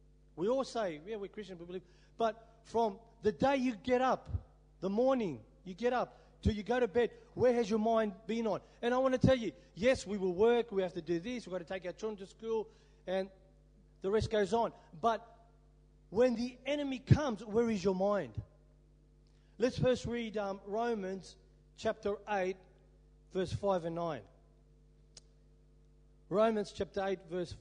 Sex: male